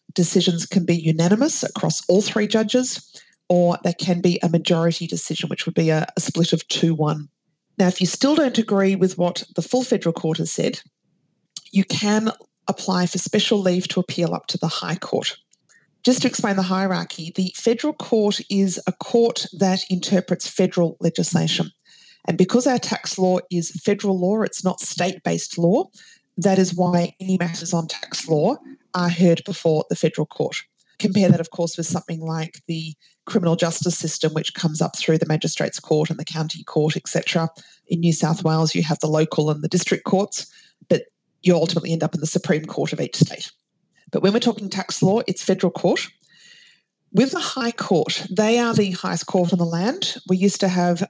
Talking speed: 190 wpm